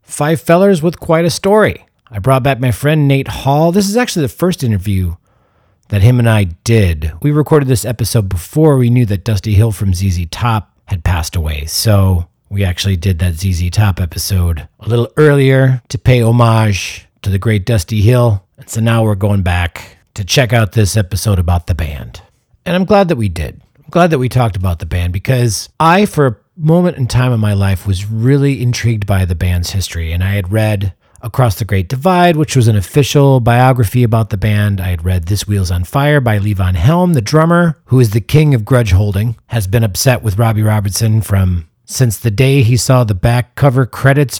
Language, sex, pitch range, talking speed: English, male, 100-135 Hz, 210 wpm